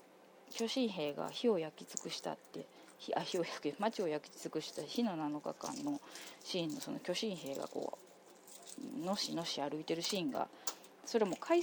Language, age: Japanese, 20-39